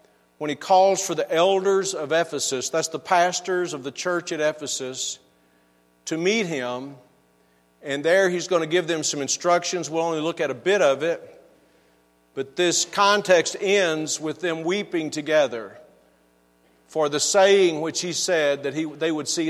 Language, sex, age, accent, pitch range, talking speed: English, male, 50-69, American, 130-180 Hz, 170 wpm